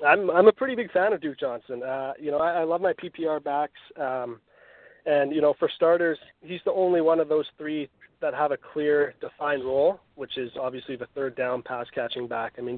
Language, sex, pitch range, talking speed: English, male, 125-150 Hz, 225 wpm